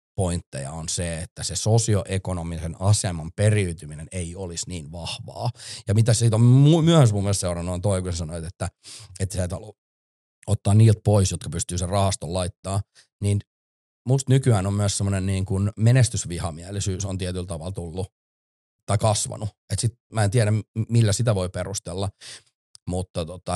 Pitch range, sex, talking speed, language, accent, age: 85-110 Hz, male, 155 wpm, Finnish, native, 30-49